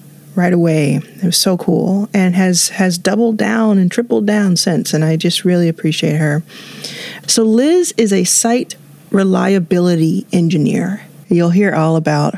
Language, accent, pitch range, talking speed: English, American, 160-195 Hz, 155 wpm